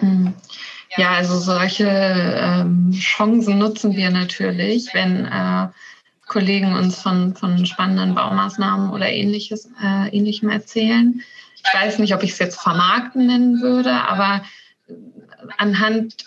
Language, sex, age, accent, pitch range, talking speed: German, female, 20-39, German, 190-215 Hz, 120 wpm